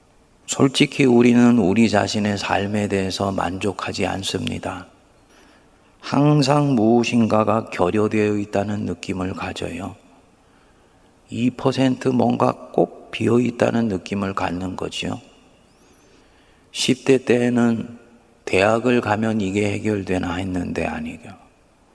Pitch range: 95-120 Hz